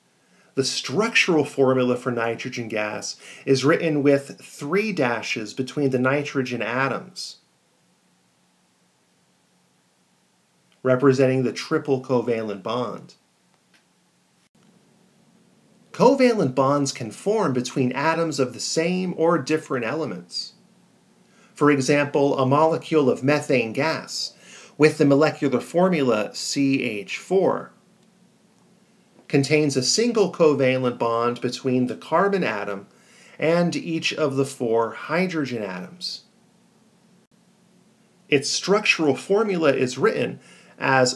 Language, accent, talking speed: English, American, 95 wpm